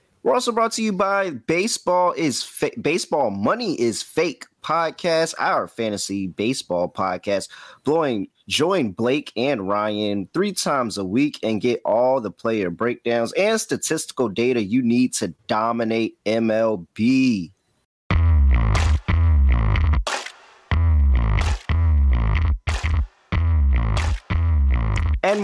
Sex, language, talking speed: male, English, 95 wpm